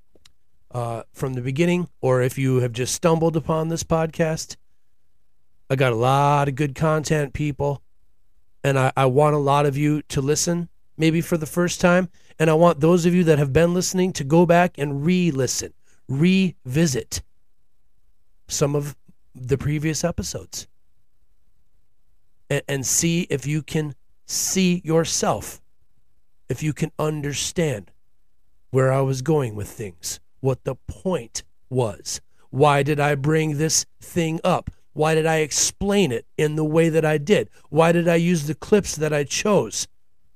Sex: male